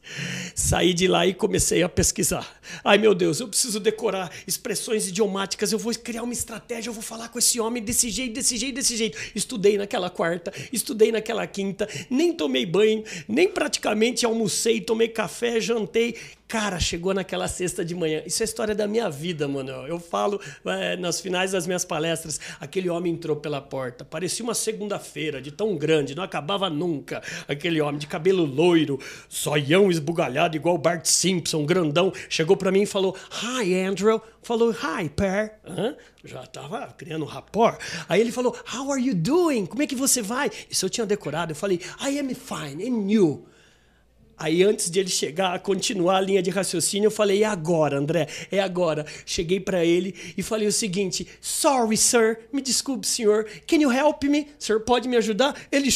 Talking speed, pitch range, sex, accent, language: 185 wpm, 170-230 Hz, male, Brazilian, Portuguese